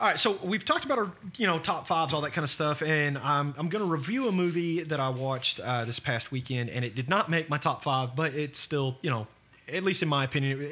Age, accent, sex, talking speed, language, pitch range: 30-49, American, male, 275 wpm, English, 125-165 Hz